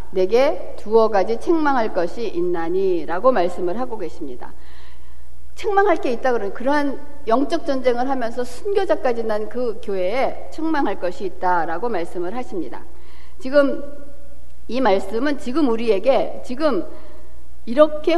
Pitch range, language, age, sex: 185-300 Hz, Korean, 60-79, female